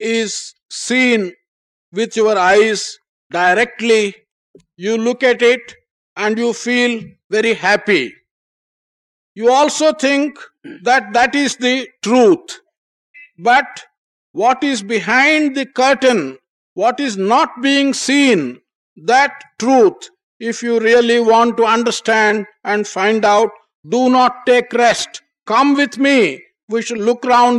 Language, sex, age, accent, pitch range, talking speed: English, male, 50-69, Indian, 225-280 Hz, 120 wpm